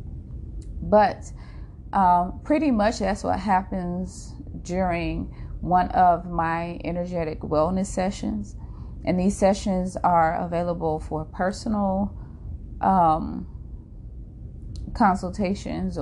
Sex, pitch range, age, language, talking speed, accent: female, 165-205 Hz, 30-49, English, 85 wpm, American